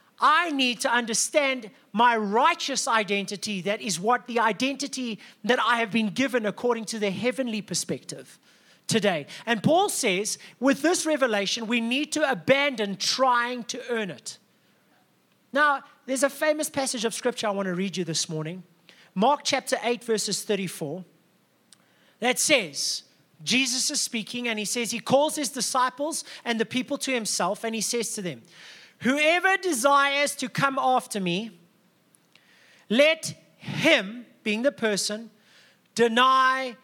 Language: English